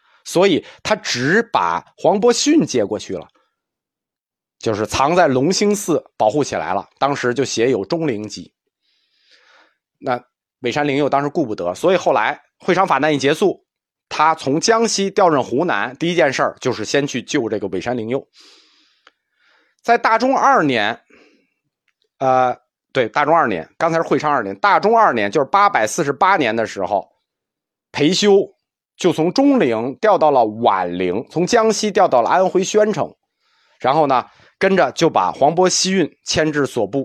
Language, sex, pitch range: Chinese, male, 130-200 Hz